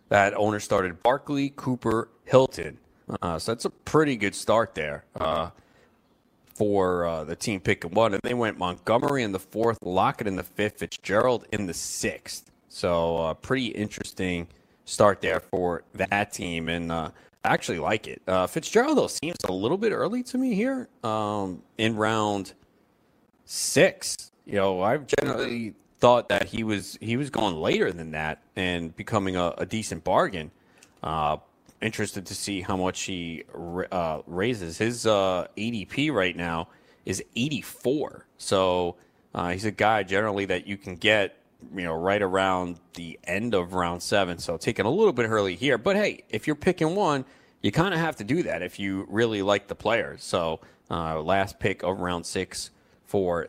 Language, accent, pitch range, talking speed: English, American, 90-115 Hz, 175 wpm